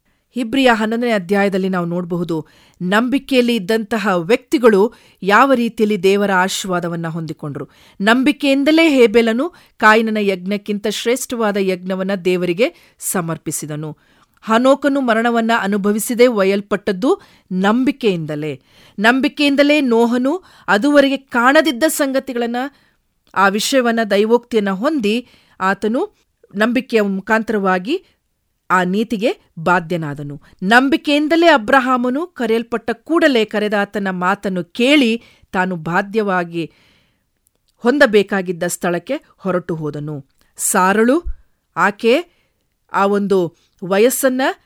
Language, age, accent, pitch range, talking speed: English, 40-59, Indian, 185-255 Hz, 85 wpm